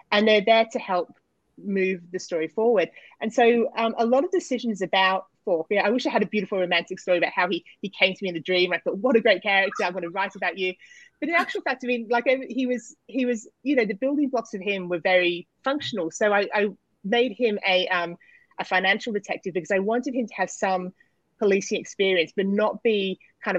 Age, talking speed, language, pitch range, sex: 30-49, 240 wpm, English, 175-230 Hz, female